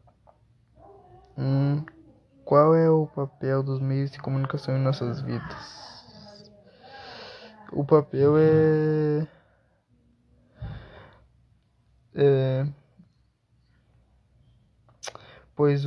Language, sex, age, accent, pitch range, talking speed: Portuguese, male, 20-39, Brazilian, 135-160 Hz, 65 wpm